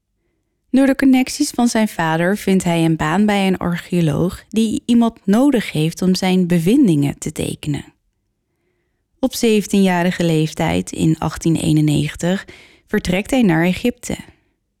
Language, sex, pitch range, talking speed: Dutch, female, 160-215 Hz, 125 wpm